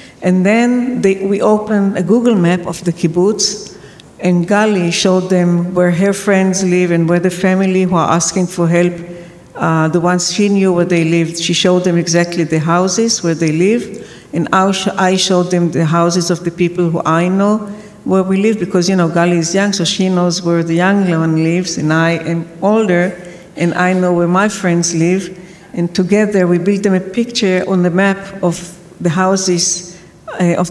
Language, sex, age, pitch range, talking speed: English, female, 60-79, 170-195 Hz, 190 wpm